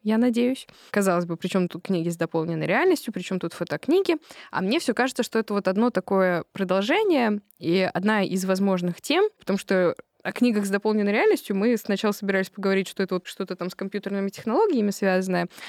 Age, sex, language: 20-39, female, Russian